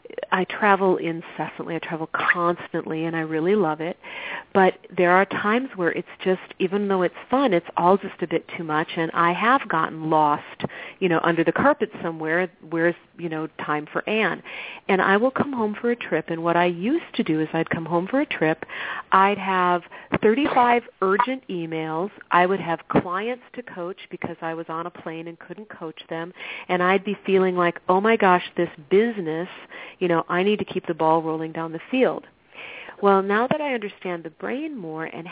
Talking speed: 205 wpm